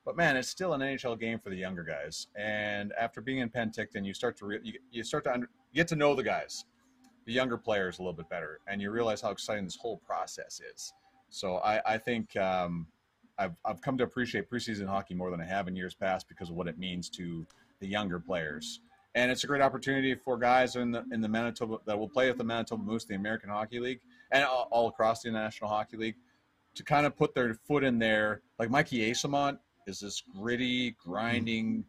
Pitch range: 95-125 Hz